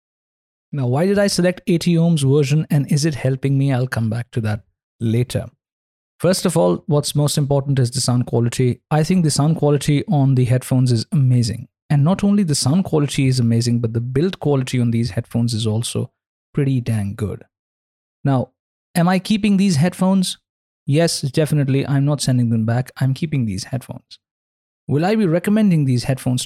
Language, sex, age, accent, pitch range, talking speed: Hindi, male, 50-69, native, 115-150 Hz, 185 wpm